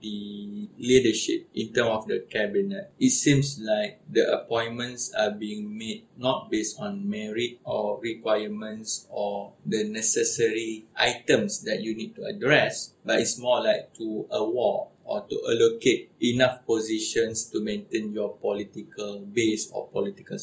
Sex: male